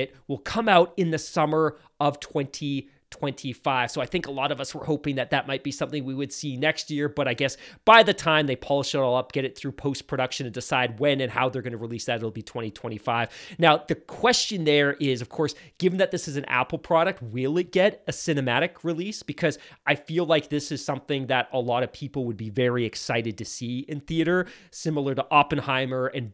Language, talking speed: English, 230 wpm